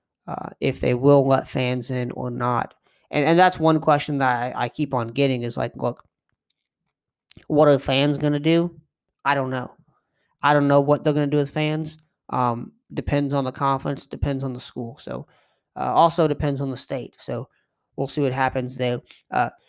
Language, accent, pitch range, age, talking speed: English, American, 130-150 Hz, 20-39, 200 wpm